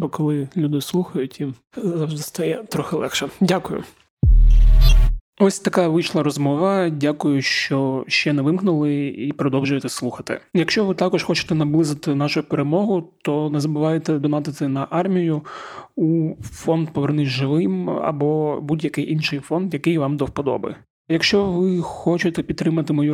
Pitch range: 140-165 Hz